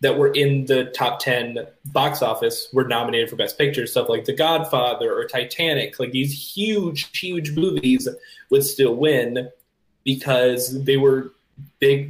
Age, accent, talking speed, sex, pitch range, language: 10-29, American, 155 wpm, male, 125-175 Hz, English